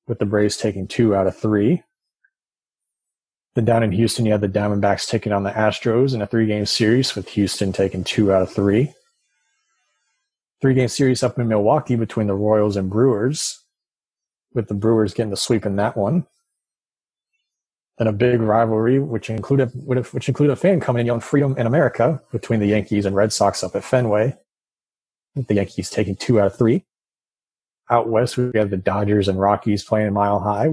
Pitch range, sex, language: 105-125 Hz, male, English